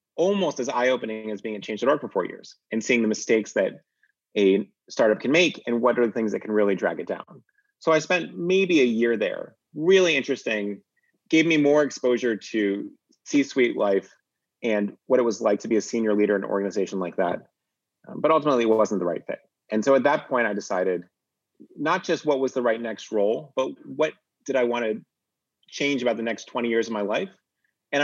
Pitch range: 105-130 Hz